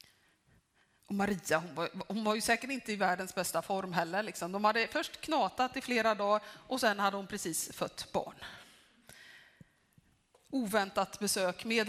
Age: 30-49